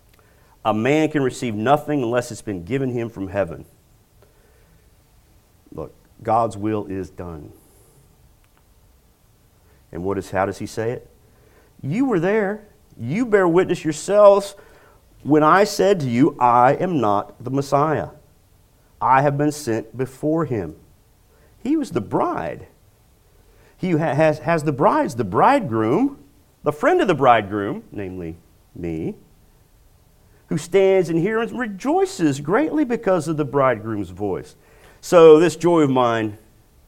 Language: English